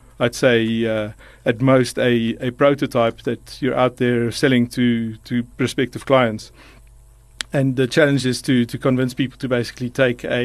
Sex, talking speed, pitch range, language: male, 165 wpm, 115-130 Hz, English